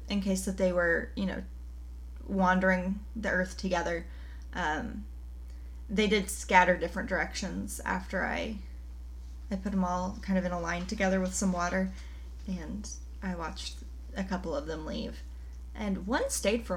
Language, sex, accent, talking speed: English, female, American, 160 wpm